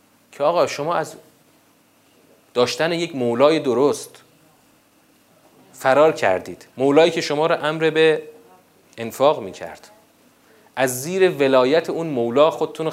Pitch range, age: 130-175 Hz, 30-49